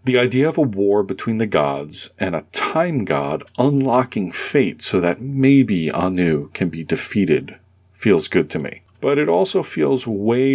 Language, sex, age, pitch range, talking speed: English, male, 40-59, 85-125 Hz, 170 wpm